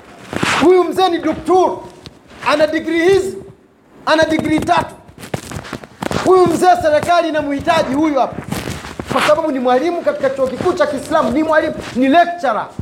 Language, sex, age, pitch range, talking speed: Swahili, male, 40-59, 260-315 Hz, 110 wpm